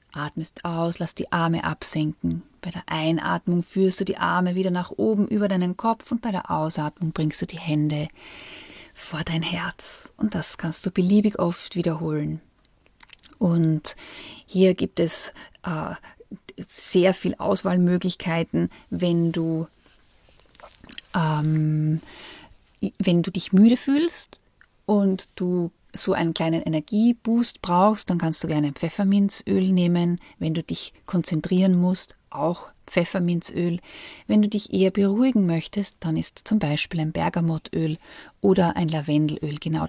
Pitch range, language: 160-200 Hz, German